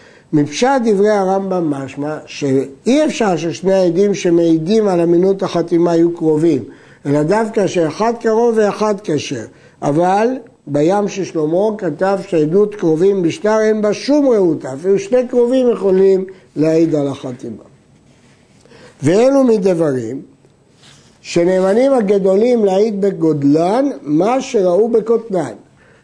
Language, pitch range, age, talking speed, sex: Hebrew, 170-235 Hz, 60-79, 110 wpm, male